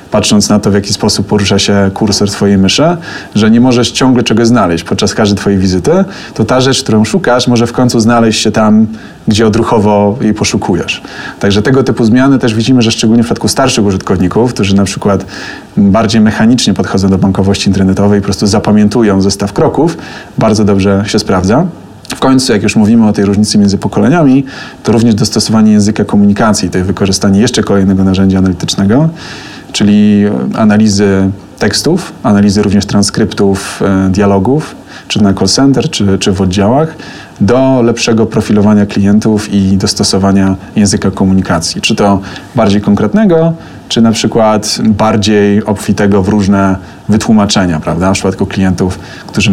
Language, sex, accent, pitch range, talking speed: Polish, male, native, 100-110 Hz, 155 wpm